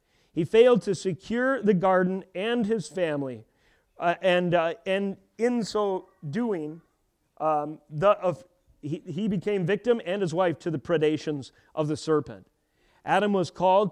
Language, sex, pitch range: English, male, 165-210 Hz